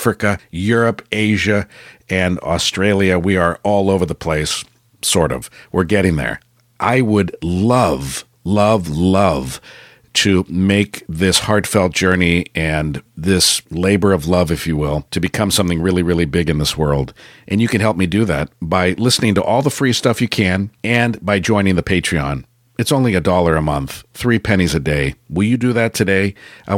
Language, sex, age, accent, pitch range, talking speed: English, male, 50-69, American, 85-105 Hz, 180 wpm